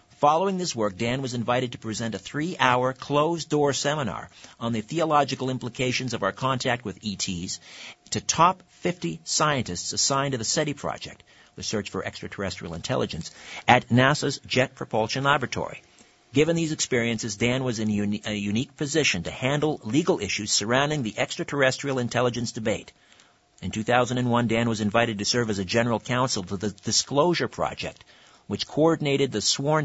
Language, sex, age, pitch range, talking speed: English, male, 50-69, 105-135 Hz, 155 wpm